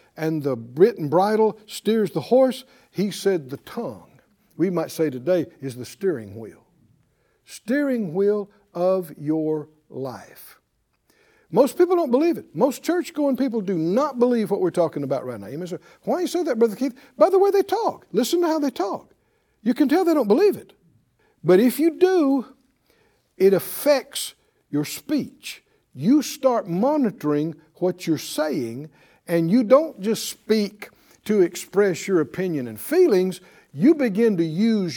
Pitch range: 175-275 Hz